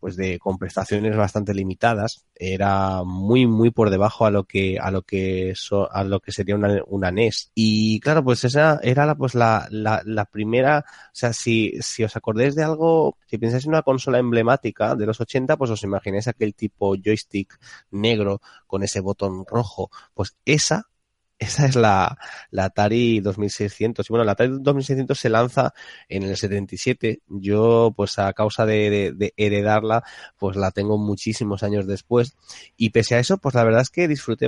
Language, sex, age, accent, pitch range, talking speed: Spanish, male, 30-49, Spanish, 100-120 Hz, 185 wpm